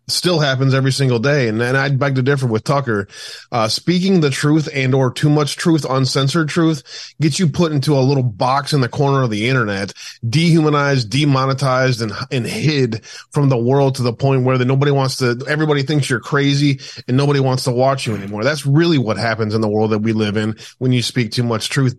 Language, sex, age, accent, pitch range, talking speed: English, male, 20-39, American, 120-140 Hz, 220 wpm